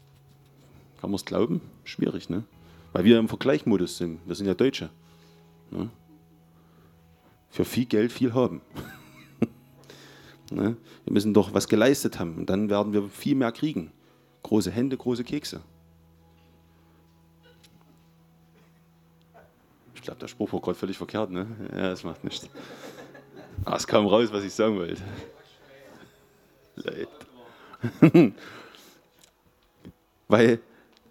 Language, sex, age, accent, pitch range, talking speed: German, male, 30-49, German, 85-110 Hz, 120 wpm